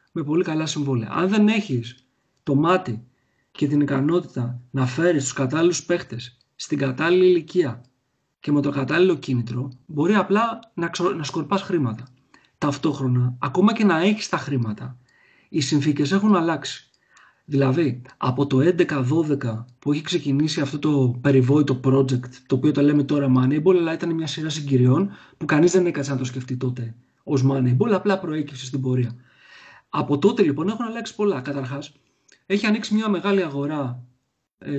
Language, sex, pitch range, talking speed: Greek, male, 135-185 Hz, 160 wpm